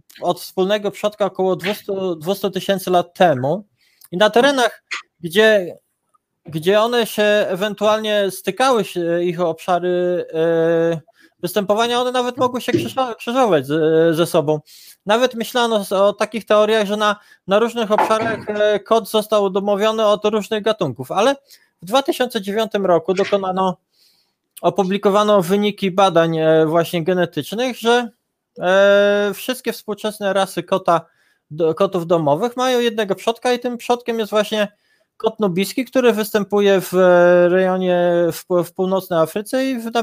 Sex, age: male, 20-39